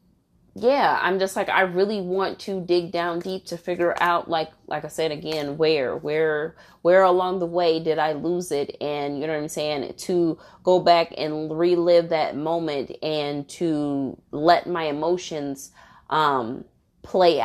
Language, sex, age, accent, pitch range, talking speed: English, female, 20-39, American, 155-180 Hz, 170 wpm